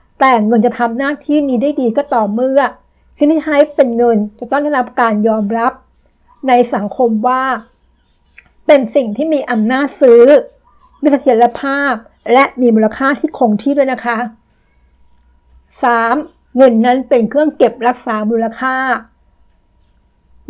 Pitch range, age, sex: 230-275 Hz, 60-79, female